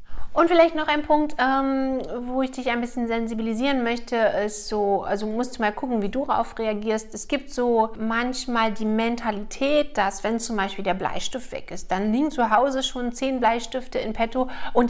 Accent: German